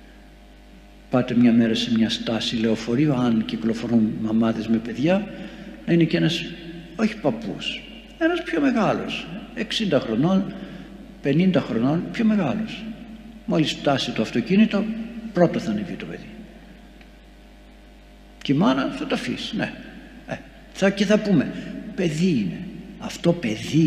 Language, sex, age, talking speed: Greek, male, 60-79, 125 wpm